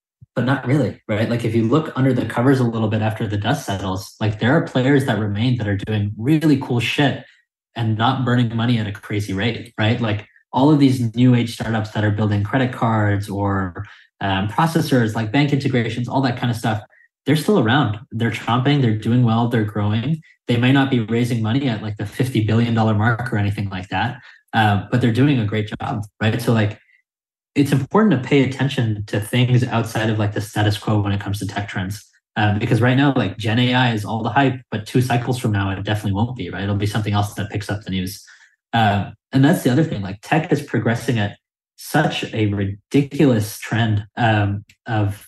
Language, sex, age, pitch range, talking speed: English, male, 20-39, 105-130 Hz, 215 wpm